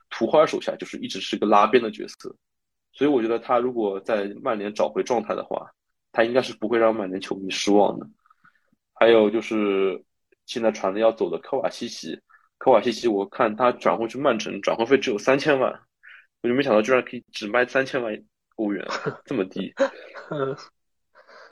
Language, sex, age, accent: Chinese, male, 20-39, native